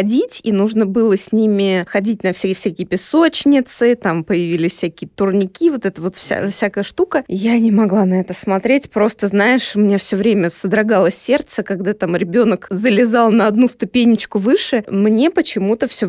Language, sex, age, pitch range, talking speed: Russian, female, 20-39, 205-250 Hz, 170 wpm